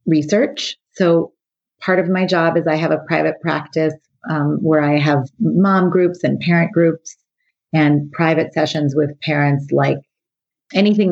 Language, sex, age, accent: English, female, 30-49, American